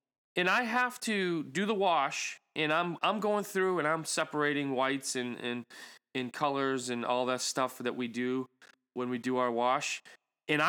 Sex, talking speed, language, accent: male, 190 wpm, English, American